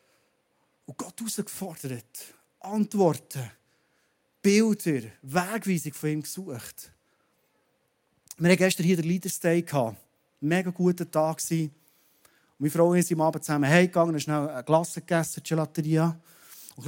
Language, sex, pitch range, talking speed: German, male, 155-190 Hz, 130 wpm